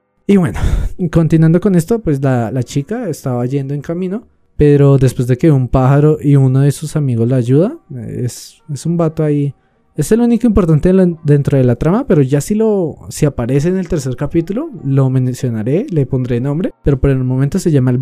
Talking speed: 205 wpm